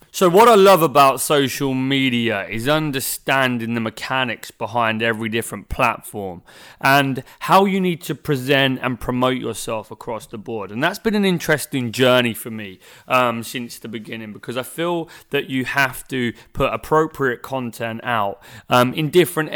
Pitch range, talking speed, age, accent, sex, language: 120-155 Hz, 165 wpm, 30-49, British, male, English